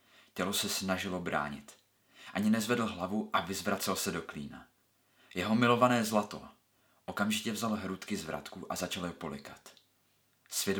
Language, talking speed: Czech, 140 wpm